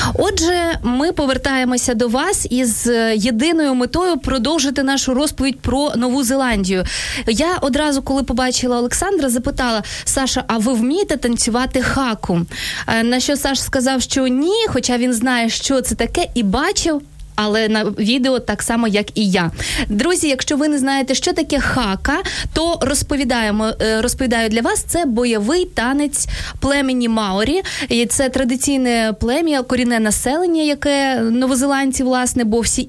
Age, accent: 20-39, native